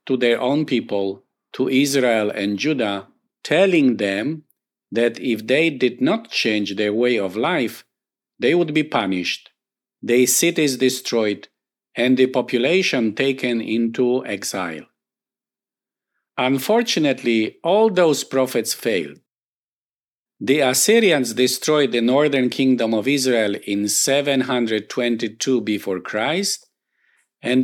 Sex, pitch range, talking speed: male, 115-150 Hz, 110 wpm